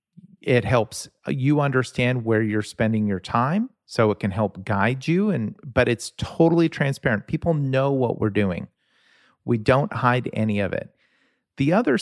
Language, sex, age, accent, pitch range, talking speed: English, male, 40-59, American, 110-160 Hz, 165 wpm